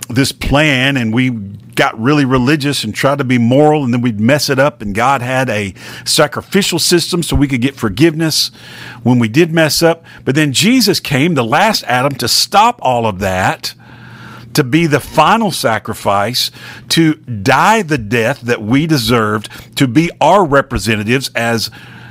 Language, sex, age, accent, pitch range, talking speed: English, male, 50-69, American, 105-135 Hz, 170 wpm